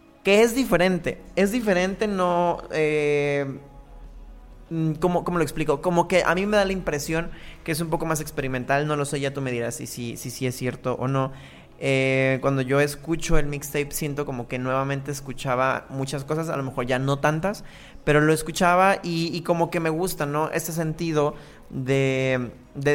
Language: Spanish